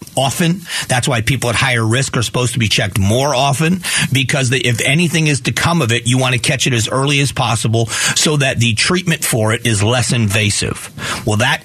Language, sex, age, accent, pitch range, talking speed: English, male, 40-59, American, 115-150 Hz, 215 wpm